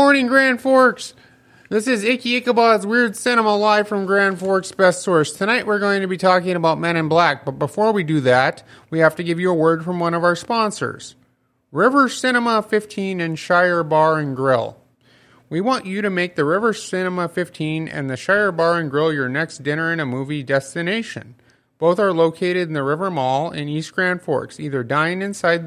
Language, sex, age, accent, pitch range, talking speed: English, male, 30-49, American, 140-190 Hz, 205 wpm